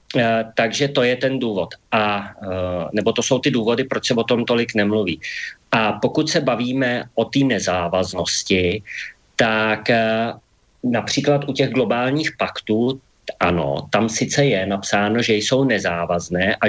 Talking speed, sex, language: 140 wpm, male, Slovak